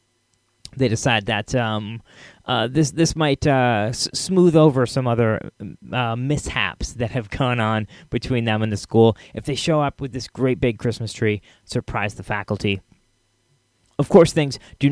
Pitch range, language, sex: 110-140 Hz, English, male